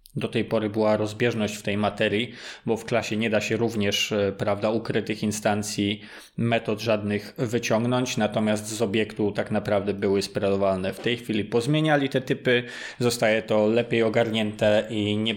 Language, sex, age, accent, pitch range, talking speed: Polish, male, 20-39, native, 105-125 Hz, 155 wpm